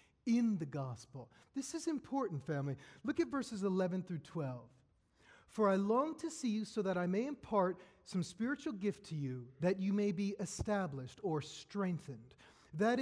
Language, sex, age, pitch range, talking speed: English, male, 40-59, 155-230 Hz, 170 wpm